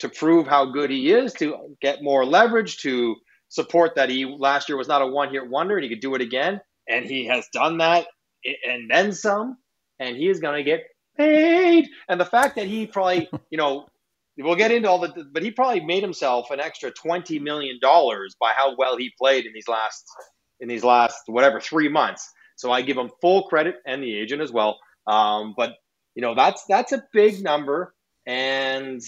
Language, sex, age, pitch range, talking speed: English, male, 30-49, 115-175 Hz, 205 wpm